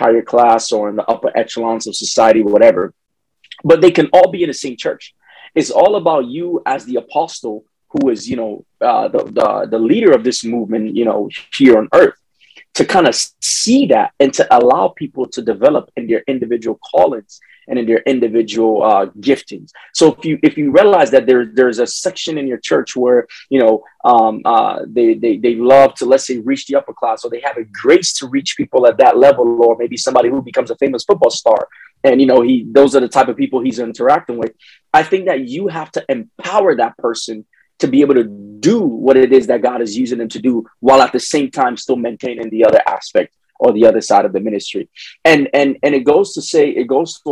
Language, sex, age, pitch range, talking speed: English, male, 20-39, 120-170 Hz, 225 wpm